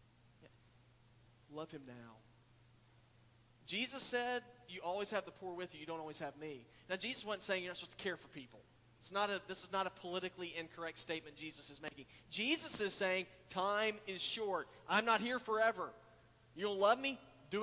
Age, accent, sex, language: 40-59, American, male, English